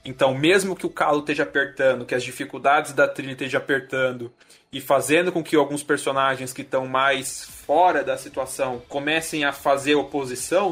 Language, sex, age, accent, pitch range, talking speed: Portuguese, male, 20-39, Brazilian, 135-165 Hz, 170 wpm